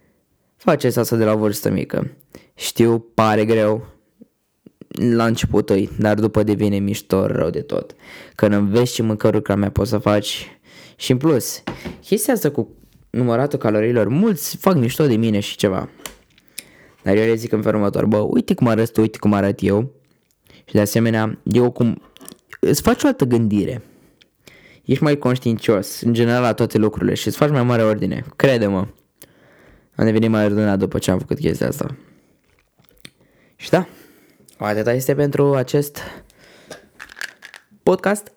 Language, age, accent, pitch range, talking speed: Romanian, 20-39, native, 105-130 Hz, 155 wpm